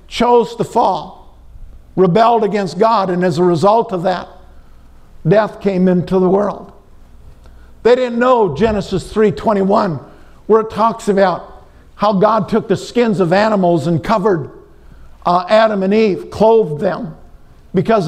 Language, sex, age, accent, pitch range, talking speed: English, male, 50-69, American, 145-225 Hz, 145 wpm